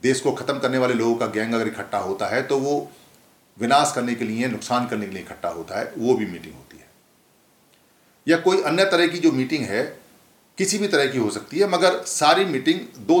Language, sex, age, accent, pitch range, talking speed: Hindi, male, 50-69, native, 115-160 Hz, 225 wpm